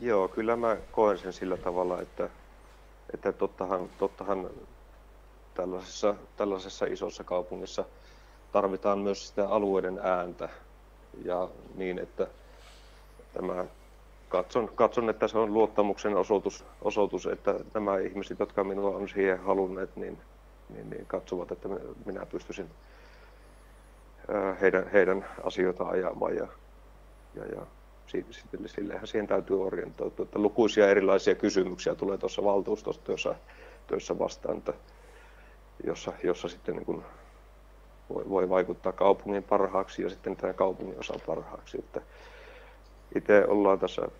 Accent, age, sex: native, 30-49, male